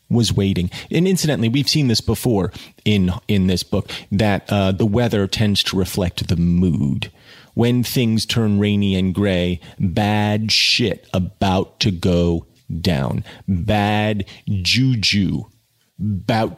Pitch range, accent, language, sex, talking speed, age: 95-120 Hz, American, English, male, 130 wpm, 40-59